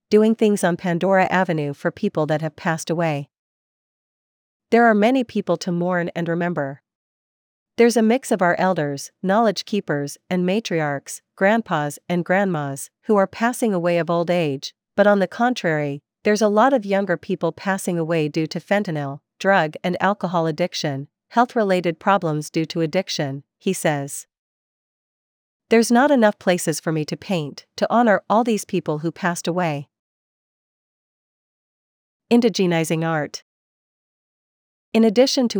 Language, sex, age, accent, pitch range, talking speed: English, female, 40-59, American, 160-205 Hz, 145 wpm